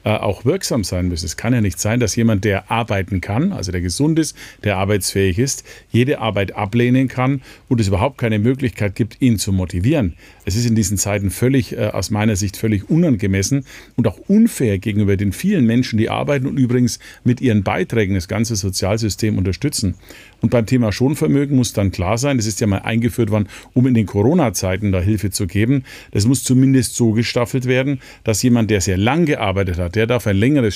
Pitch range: 100-125 Hz